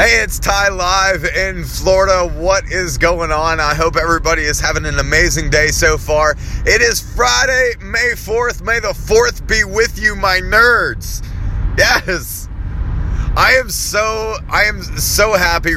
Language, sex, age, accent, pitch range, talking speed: English, male, 30-49, American, 120-165 Hz, 155 wpm